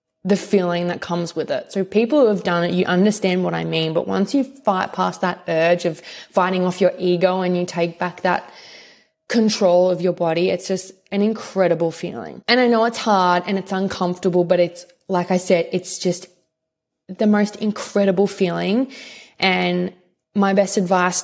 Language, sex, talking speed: English, female, 185 wpm